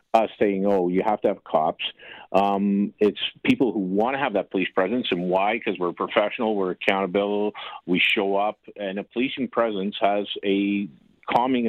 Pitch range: 100-110 Hz